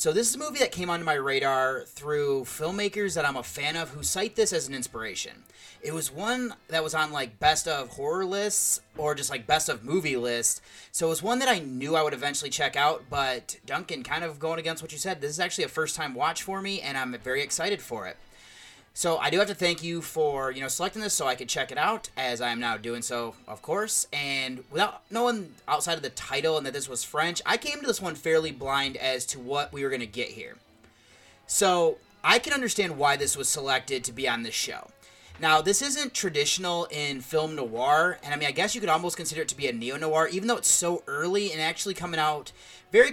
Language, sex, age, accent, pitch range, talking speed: English, male, 30-49, American, 135-195 Hz, 240 wpm